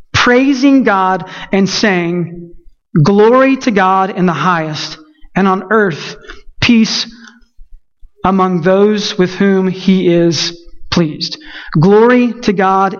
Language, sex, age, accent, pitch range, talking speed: English, male, 30-49, American, 175-220 Hz, 110 wpm